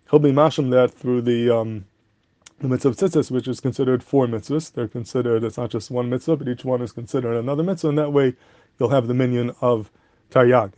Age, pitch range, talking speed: 30-49, 115-135 Hz, 205 wpm